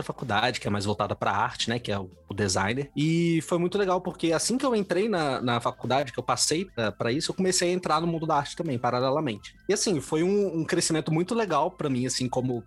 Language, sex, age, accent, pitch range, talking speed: Portuguese, male, 20-39, Brazilian, 115-155 Hz, 245 wpm